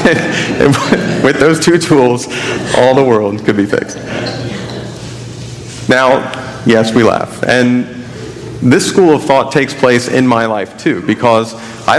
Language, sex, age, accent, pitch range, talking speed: English, male, 40-59, American, 110-125 Hz, 135 wpm